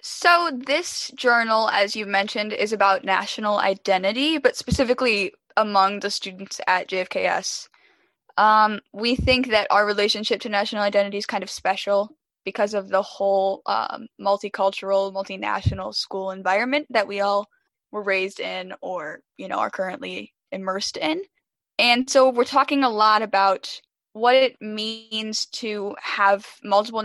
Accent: American